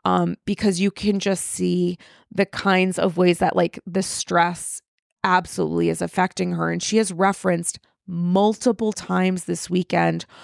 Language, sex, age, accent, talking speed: English, female, 30-49, American, 150 wpm